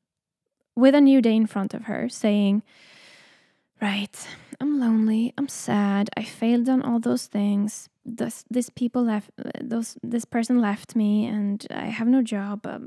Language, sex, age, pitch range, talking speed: English, female, 10-29, 215-255 Hz, 165 wpm